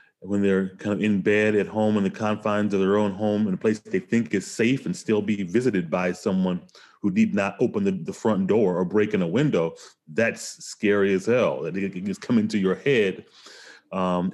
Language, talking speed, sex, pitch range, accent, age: English, 225 wpm, male, 95-120 Hz, American, 30-49